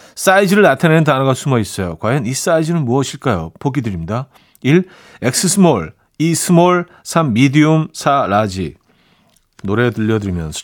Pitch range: 110-160 Hz